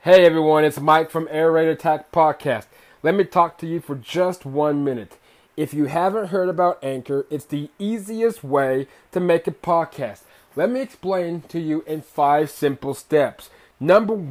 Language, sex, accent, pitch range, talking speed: English, male, American, 145-175 Hz, 175 wpm